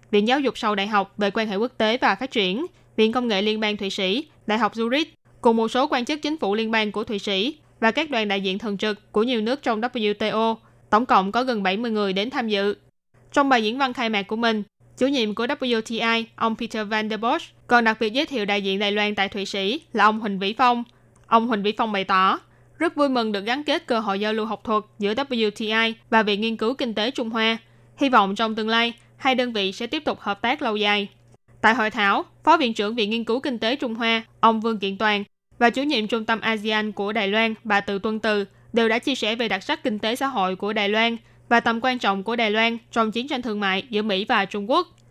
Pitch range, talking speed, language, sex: 210-240 Hz, 255 wpm, Vietnamese, female